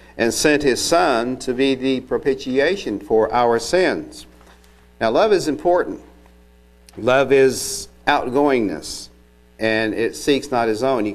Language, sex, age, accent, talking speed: English, male, 50-69, American, 135 wpm